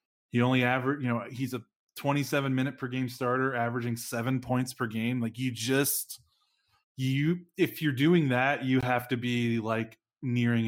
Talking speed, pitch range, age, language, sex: 175 wpm, 115-130 Hz, 20-39, English, male